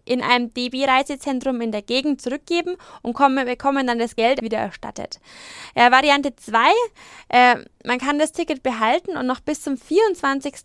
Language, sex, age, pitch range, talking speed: German, female, 20-39, 230-290 Hz, 145 wpm